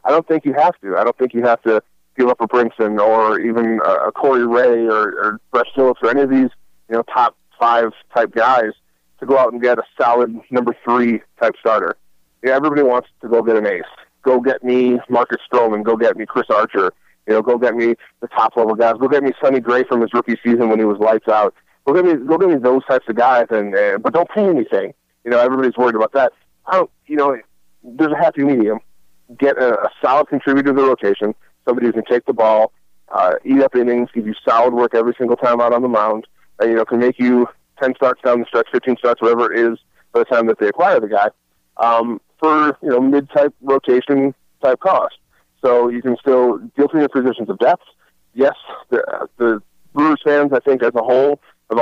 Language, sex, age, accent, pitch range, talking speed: English, male, 30-49, American, 115-130 Hz, 230 wpm